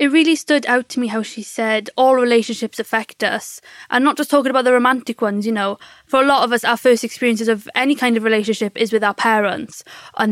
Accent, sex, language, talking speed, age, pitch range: British, female, English, 240 wpm, 20-39, 225-260 Hz